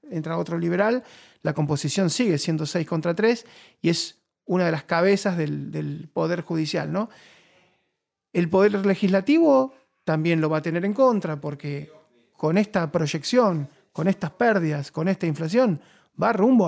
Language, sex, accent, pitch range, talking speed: Spanish, male, Argentinian, 155-195 Hz, 155 wpm